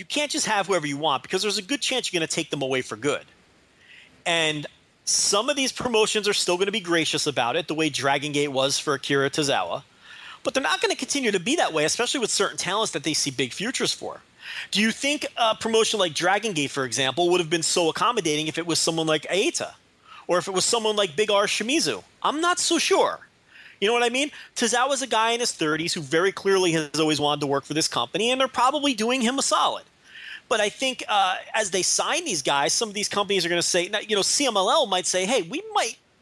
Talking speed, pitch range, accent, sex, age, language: 250 wpm, 160-240 Hz, American, male, 30-49, English